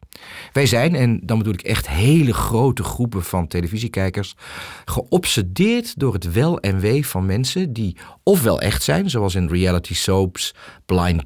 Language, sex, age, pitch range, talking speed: Dutch, male, 40-59, 90-135 Hz, 155 wpm